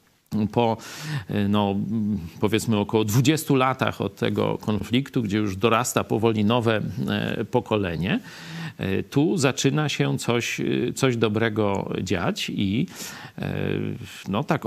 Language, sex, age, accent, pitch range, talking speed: Polish, male, 40-59, native, 105-140 Hz, 100 wpm